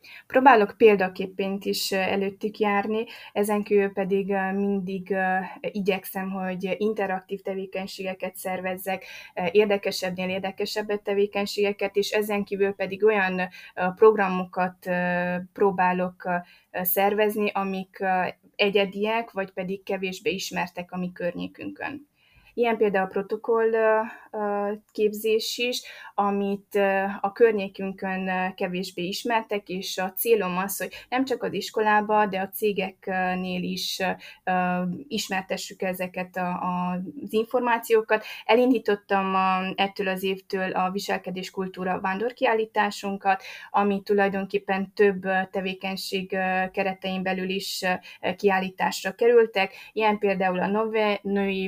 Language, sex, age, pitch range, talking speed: Hungarian, female, 20-39, 185-205 Hz, 95 wpm